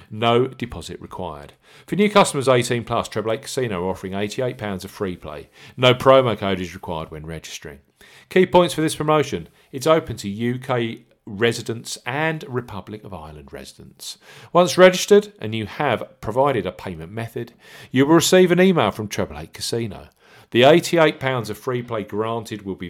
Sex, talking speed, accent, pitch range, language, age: male, 170 wpm, British, 95-145 Hz, English, 40-59